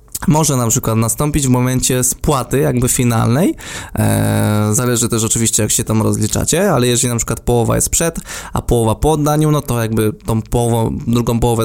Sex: male